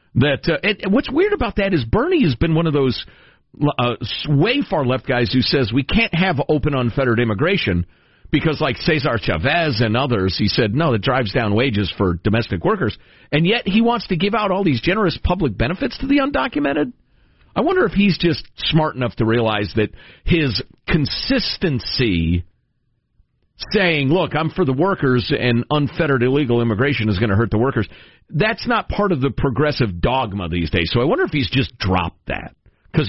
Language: English